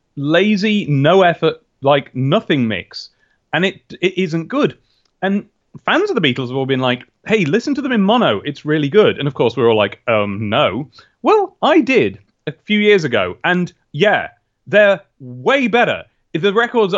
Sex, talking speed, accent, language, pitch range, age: male, 185 wpm, British, English, 120-200 Hz, 30-49